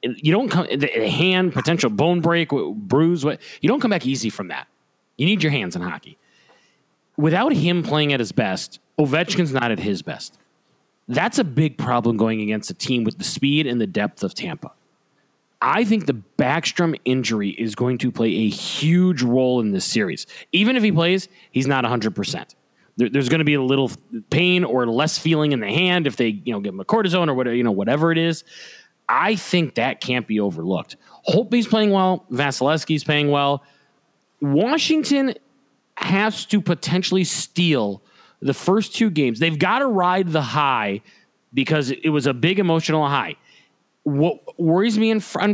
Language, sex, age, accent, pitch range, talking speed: English, male, 30-49, American, 130-180 Hz, 180 wpm